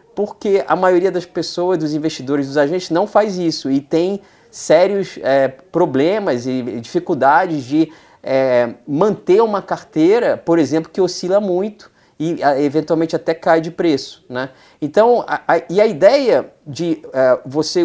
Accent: Brazilian